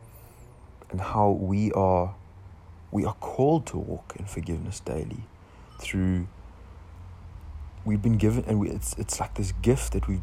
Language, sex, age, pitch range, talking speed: English, male, 20-39, 85-100 Hz, 140 wpm